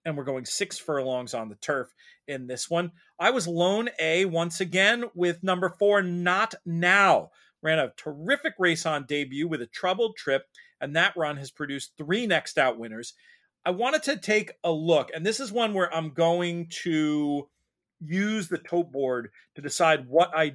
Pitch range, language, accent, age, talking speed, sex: 145-185 Hz, English, American, 40-59, 185 wpm, male